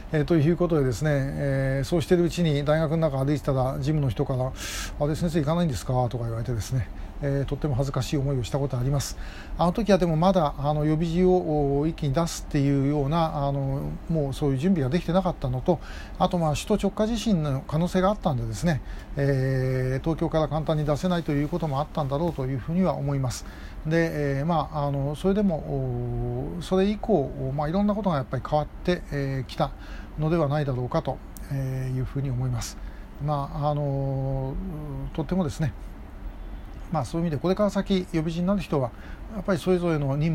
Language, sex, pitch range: Japanese, male, 130-165 Hz